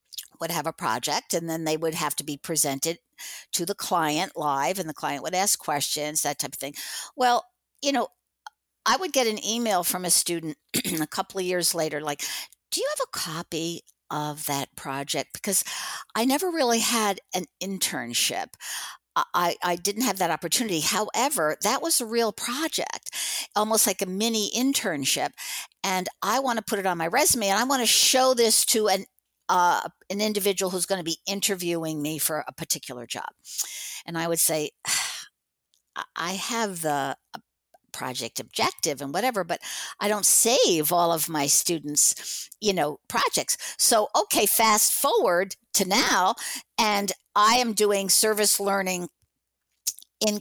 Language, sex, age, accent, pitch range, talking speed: English, female, 60-79, American, 165-225 Hz, 165 wpm